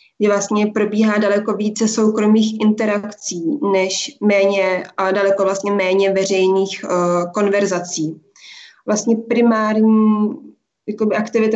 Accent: native